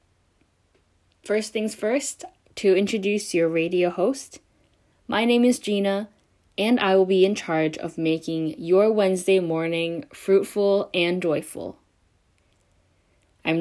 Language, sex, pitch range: Korean, female, 155-210 Hz